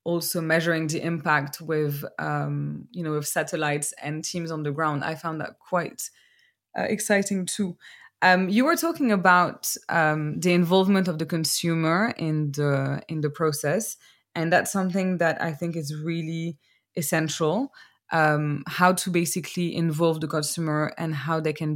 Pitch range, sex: 155-180 Hz, female